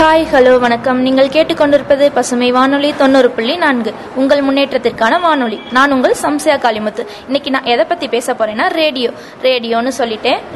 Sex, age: female, 20-39